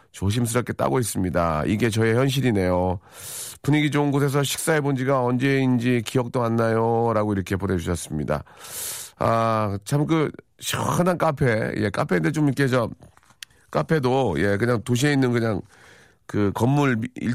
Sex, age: male, 40-59